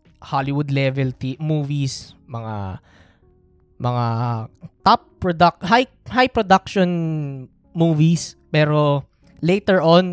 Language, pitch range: Filipino, 140-175 Hz